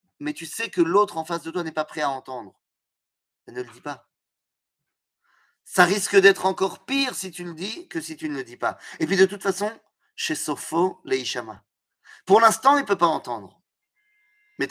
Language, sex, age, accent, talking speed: French, male, 30-49, French, 210 wpm